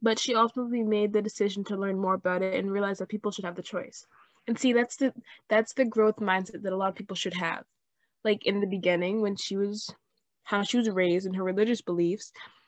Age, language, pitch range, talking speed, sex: 10-29, English, 180-225 Hz, 225 wpm, female